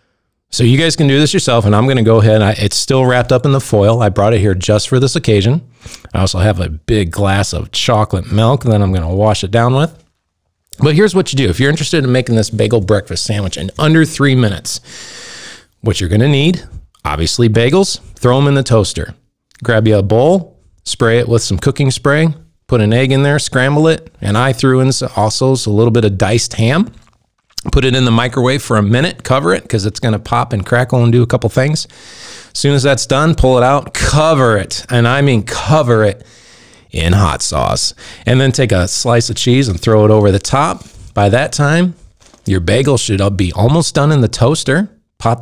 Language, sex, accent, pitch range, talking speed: English, male, American, 100-135 Hz, 220 wpm